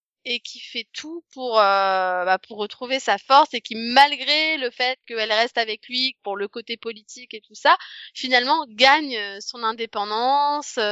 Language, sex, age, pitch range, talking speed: French, female, 20-39, 215-275 Hz, 170 wpm